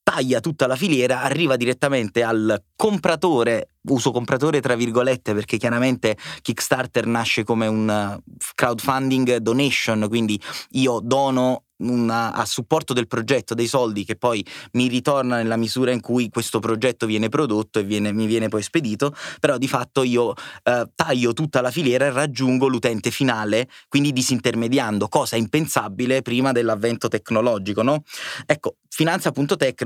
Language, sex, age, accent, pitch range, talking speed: Italian, male, 20-39, native, 115-135 Hz, 145 wpm